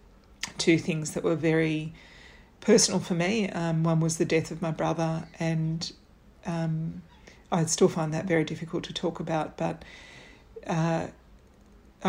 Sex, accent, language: female, Australian, English